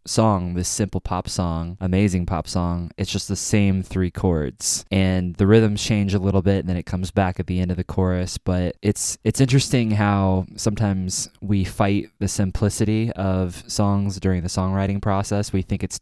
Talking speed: 190 wpm